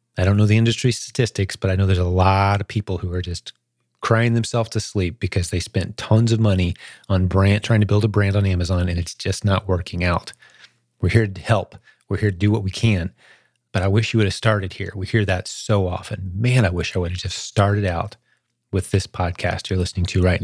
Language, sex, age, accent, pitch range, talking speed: English, male, 30-49, American, 95-110 Hz, 240 wpm